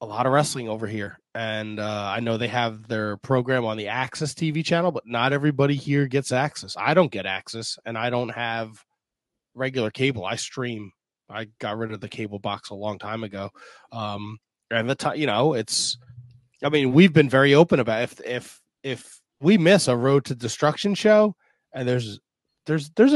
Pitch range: 115-150 Hz